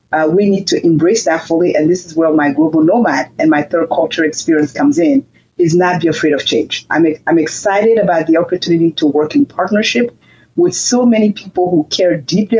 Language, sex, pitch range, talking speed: English, female, 160-220 Hz, 210 wpm